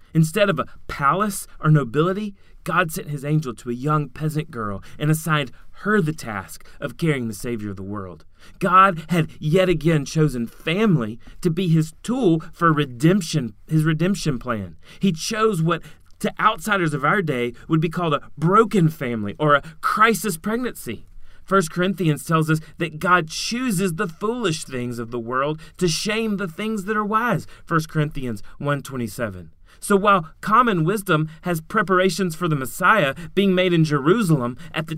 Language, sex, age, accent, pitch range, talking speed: English, male, 30-49, American, 150-210 Hz, 170 wpm